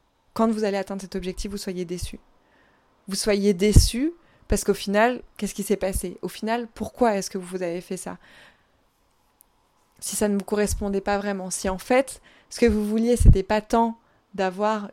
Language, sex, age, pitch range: French, female, 20-39, 195-220 Hz